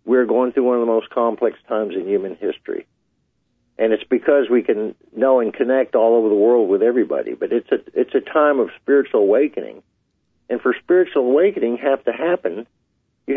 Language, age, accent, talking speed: English, 50-69, American, 195 wpm